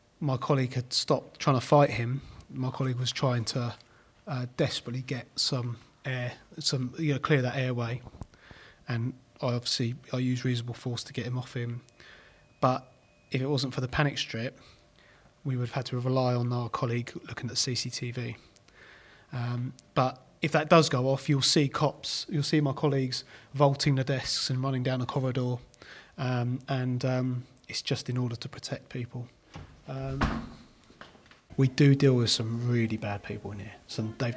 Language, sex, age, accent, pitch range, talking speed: English, male, 30-49, British, 115-135 Hz, 175 wpm